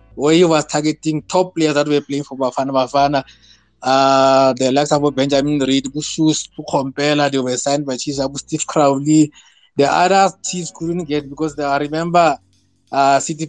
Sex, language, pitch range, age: male, English, 135-160 Hz, 20-39